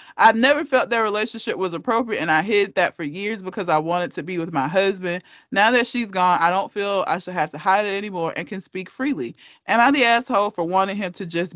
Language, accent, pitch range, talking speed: English, American, 190-295 Hz, 250 wpm